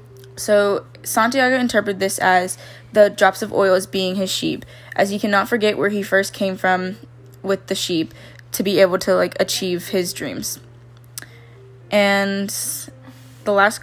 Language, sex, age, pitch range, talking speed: English, female, 10-29, 160-200 Hz, 155 wpm